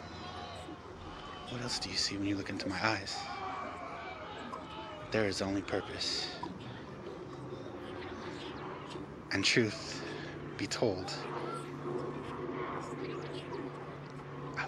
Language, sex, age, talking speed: English, male, 30-49, 80 wpm